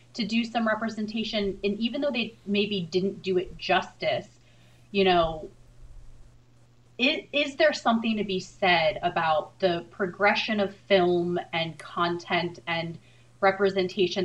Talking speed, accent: 130 wpm, American